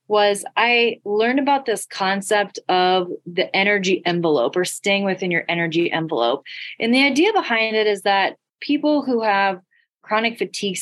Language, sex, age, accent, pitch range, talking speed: English, female, 20-39, American, 170-215 Hz, 155 wpm